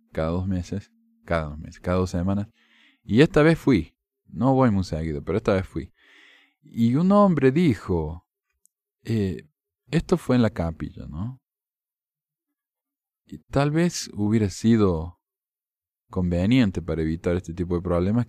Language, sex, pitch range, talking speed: Spanish, male, 85-125 Hz, 140 wpm